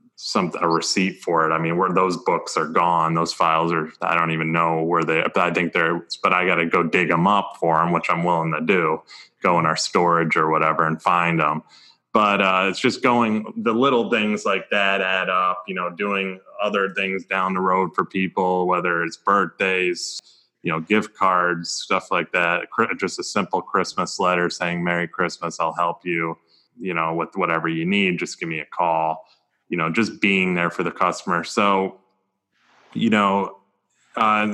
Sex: male